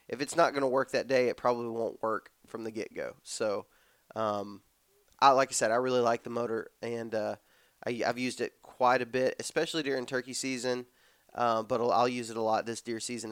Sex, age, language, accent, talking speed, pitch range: male, 20-39, English, American, 225 wpm, 115-130 Hz